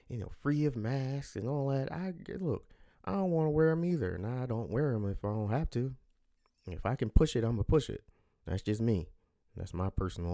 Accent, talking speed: American, 255 wpm